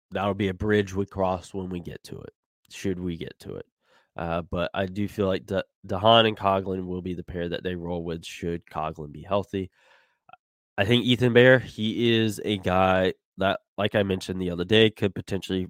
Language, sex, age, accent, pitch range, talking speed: English, male, 20-39, American, 85-105 Hz, 215 wpm